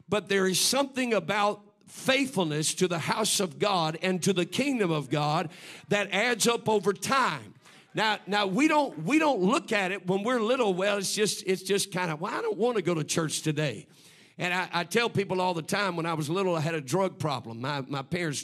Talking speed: 230 wpm